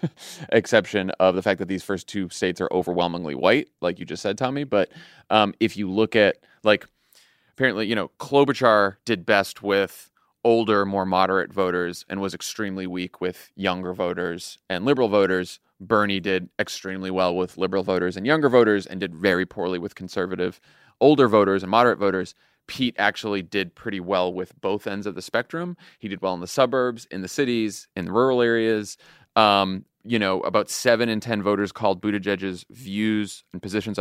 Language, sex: English, male